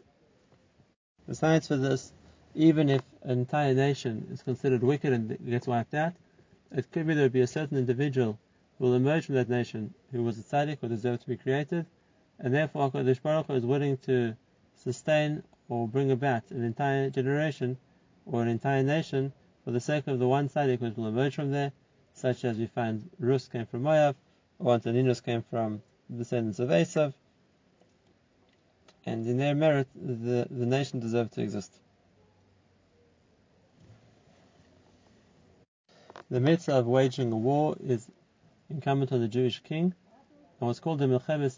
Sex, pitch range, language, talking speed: male, 120-140 Hz, English, 160 wpm